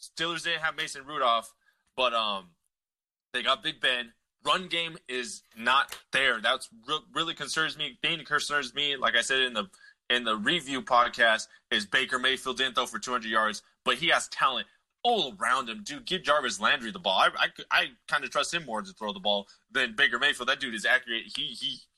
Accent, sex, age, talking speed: American, male, 20-39, 205 wpm